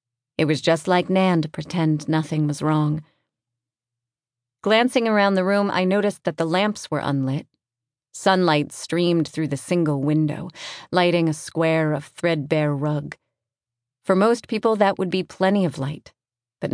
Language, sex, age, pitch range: English, female, 30-49, 145-190 Hz